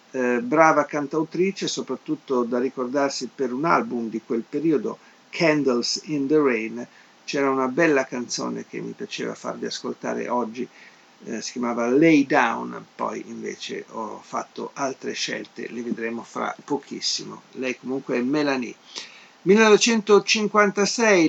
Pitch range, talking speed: 125-155 Hz, 125 wpm